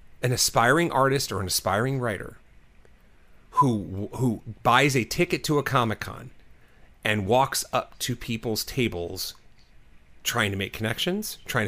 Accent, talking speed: American, 135 wpm